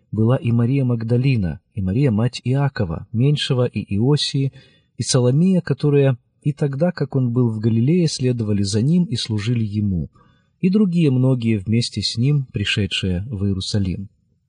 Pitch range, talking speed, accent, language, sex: 105-145 Hz, 150 wpm, native, Russian, male